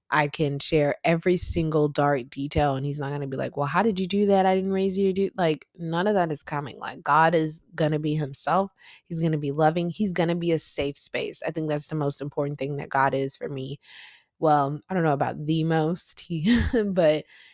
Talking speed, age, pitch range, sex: 245 wpm, 20-39, 140-170 Hz, female